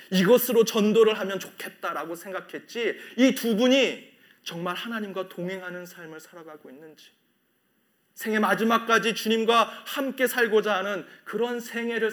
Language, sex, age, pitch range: Korean, male, 30-49, 175-225 Hz